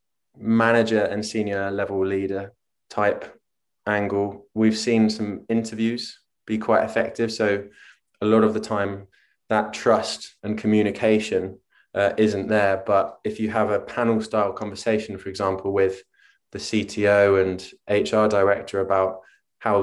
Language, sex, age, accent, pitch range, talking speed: English, male, 20-39, British, 100-115 Hz, 135 wpm